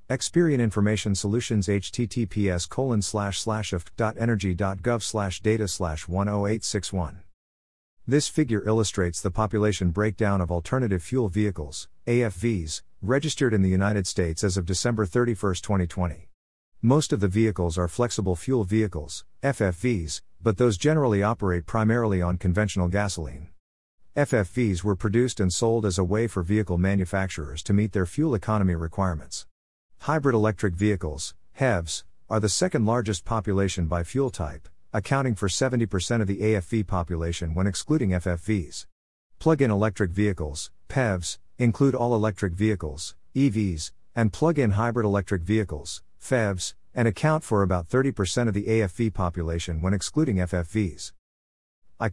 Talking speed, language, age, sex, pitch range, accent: 140 wpm, English, 50-69, male, 90-115 Hz, American